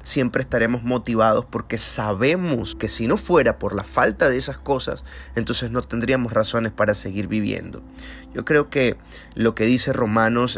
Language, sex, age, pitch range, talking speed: Spanish, male, 30-49, 110-135 Hz, 165 wpm